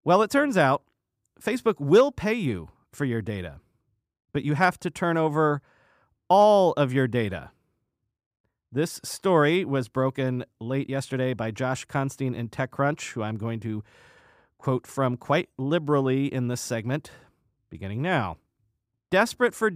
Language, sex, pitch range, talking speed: English, male, 130-175 Hz, 145 wpm